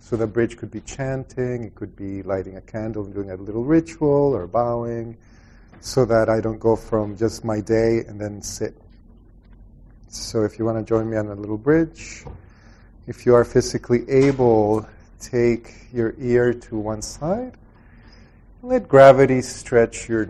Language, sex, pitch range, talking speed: English, male, 105-120 Hz, 170 wpm